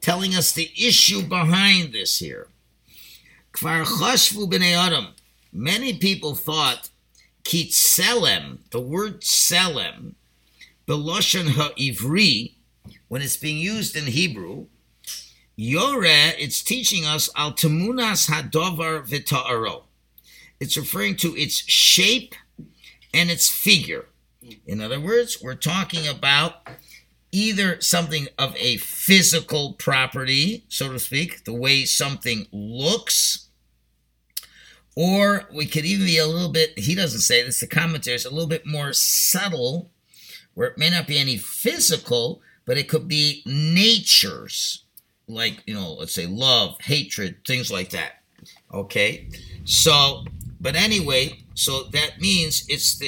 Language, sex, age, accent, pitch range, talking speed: English, male, 50-69, American, 130-180 Hz, 110 wpm